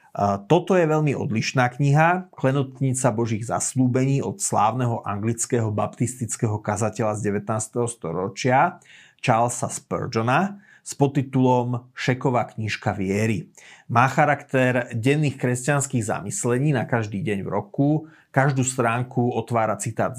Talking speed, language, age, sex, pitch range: 110 wpm, Slovak, 30-49, male, 110-135 Hz